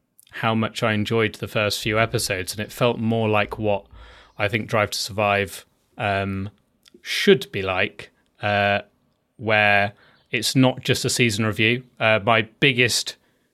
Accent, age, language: British, 30-49, English